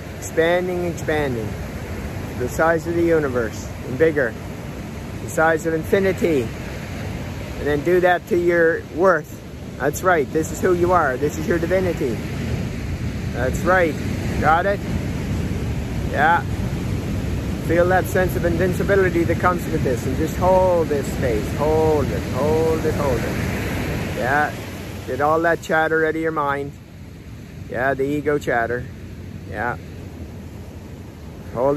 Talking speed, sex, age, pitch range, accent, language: 135 wpm, male, 50-69, 105-160 Hz, American, English